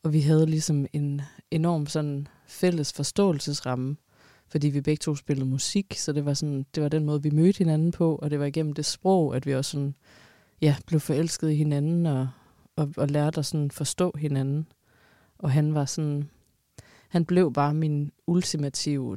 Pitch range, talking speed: 140-160 Hz, 170 wpm